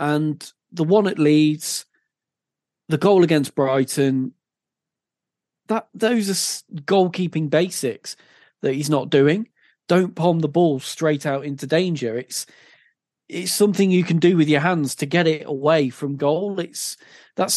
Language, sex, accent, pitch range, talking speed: English, male, British, 140-170 Hz, 145 wpm